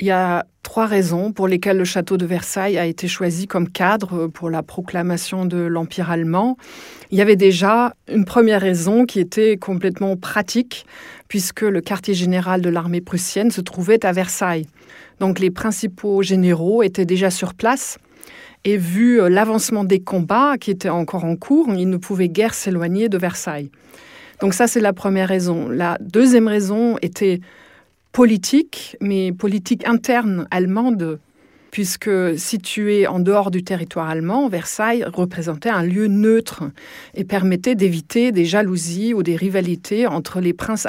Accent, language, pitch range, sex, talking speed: French, French, 180-215 Hz, female, 155 wpm